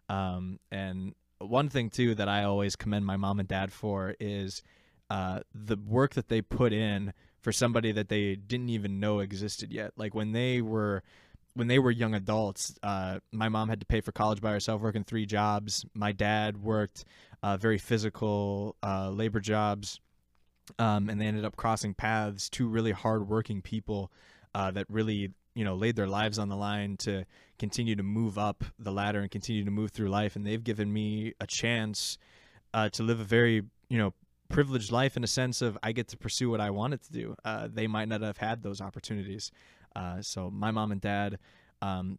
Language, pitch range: English, 100-110 Hz